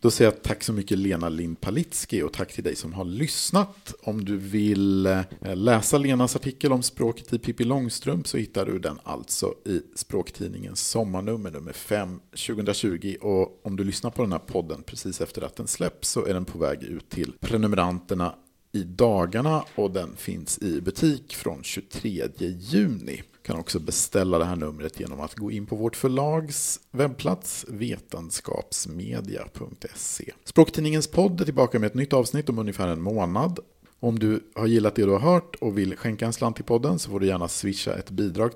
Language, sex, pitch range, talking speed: Swedish, male, 95-130 Hz, 185 wpm